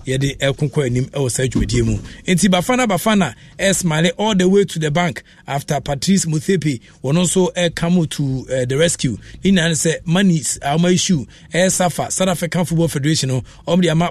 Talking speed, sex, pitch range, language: 190 wpm, male, 140-175 Hz, English